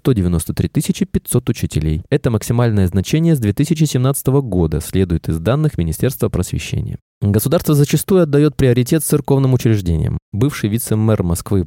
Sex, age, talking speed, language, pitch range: male, 20-39, 120 wpm, Russian, 95-140 Hz